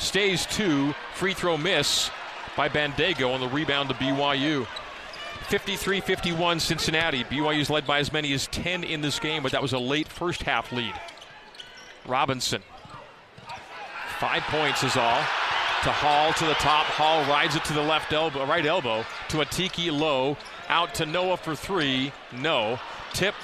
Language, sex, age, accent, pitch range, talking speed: English, male, 40-59, American, 145-175 Hz, 160 wpm